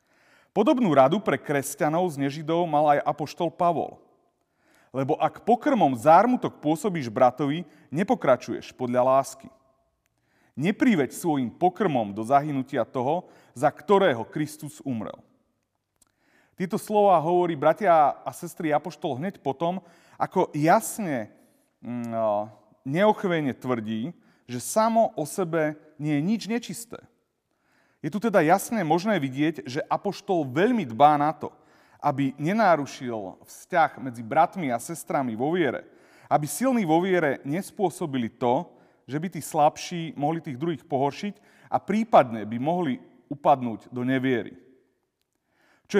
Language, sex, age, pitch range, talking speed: Slovak, male, 30-49, 130-180 Hz, 120 wpm